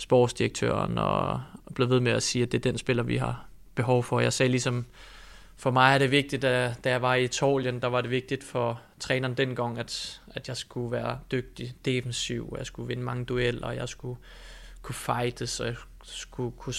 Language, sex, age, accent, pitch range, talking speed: English, male, 20-39, Danish, 125-135 Hz, 210 wpm